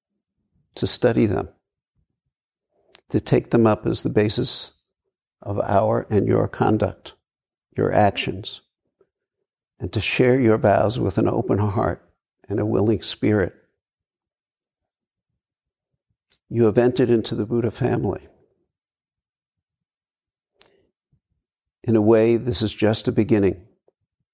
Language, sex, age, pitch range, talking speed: English, male, 60-79, 105-120 Hz, 110 wpm